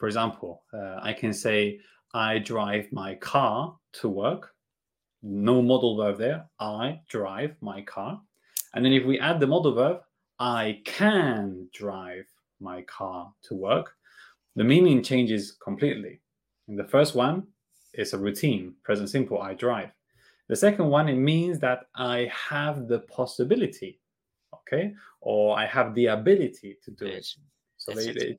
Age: 30-49